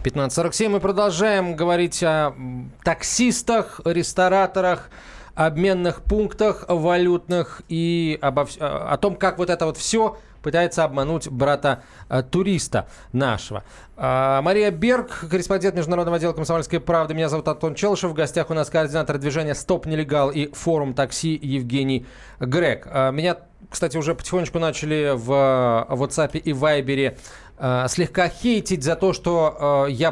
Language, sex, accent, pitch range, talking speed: Russian, male, native, 145-185 Hz, 125 wpm